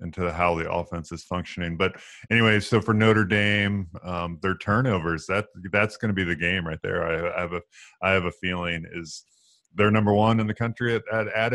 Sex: male